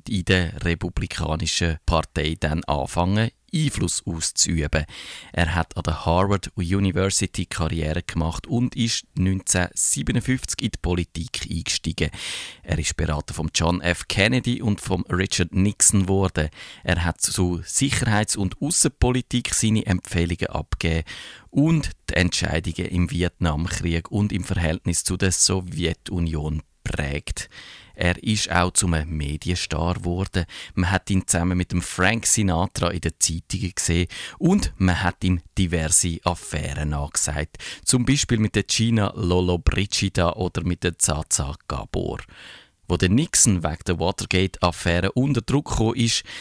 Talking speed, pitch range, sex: 135 wpm, 85-100 Hz, male